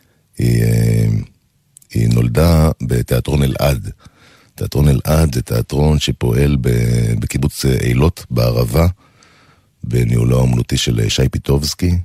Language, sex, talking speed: Hebrew, male, 90 wpm